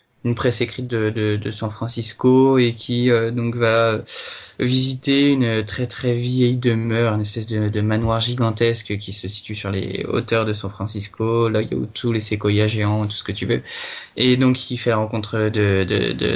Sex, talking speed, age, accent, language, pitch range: male, 200 wpm, 20-39, French, French, 110-125 Hz